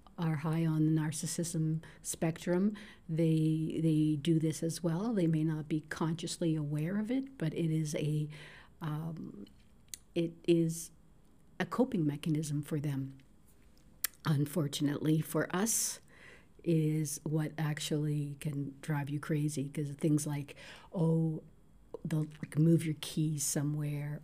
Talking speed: 130 wpm